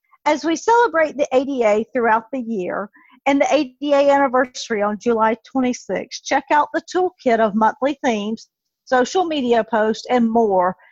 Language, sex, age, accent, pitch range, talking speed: English, female, 50-69, American, 220-280 Hz, 150 wpm